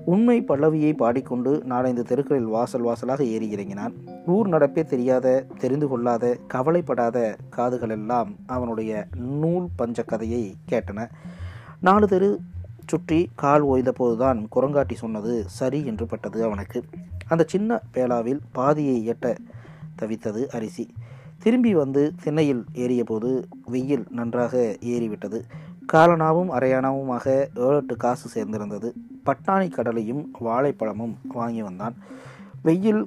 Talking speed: 105 wpm